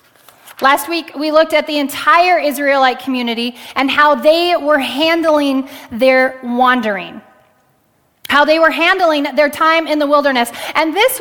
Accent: American